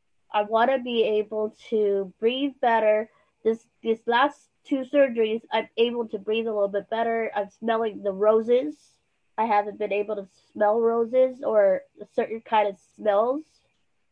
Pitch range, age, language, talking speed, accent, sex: 200-230 Hz, 20-39, English, 160 wpm, American, female